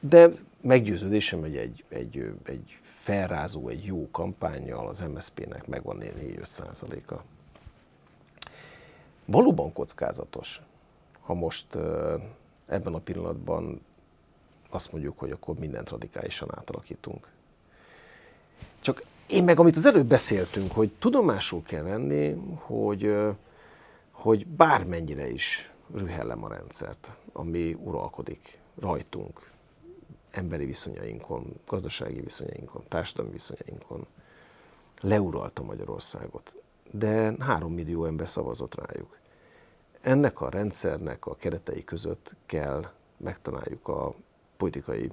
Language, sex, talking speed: Hungarian, male, 100 wpm